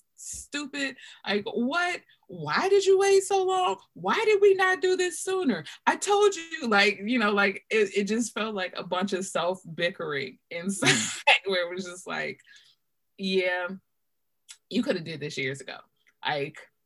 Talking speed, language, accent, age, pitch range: 170 wpm, English, American, 20-39, 135-195 Hz